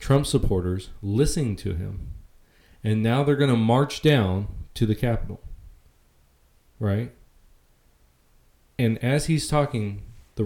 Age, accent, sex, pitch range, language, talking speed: 20-39, American, male, 90-115 Hz, English, 120 wpm